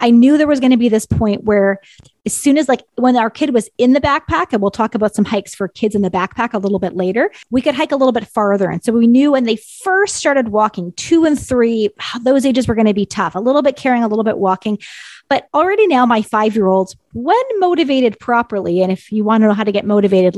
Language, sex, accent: English, female, American